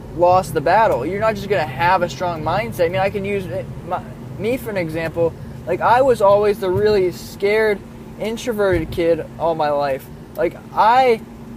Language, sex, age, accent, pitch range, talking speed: English, male, 20-39, American, 165-215 Hz, 190 wpm